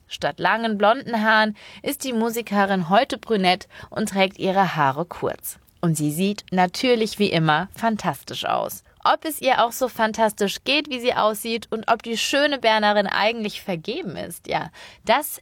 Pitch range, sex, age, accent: 185-250 Hz, female, 20-39, German